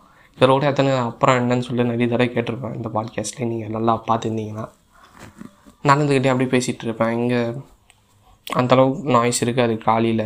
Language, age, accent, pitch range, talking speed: Tamil, 20-39, native, 115-135 Hz, 140 wpm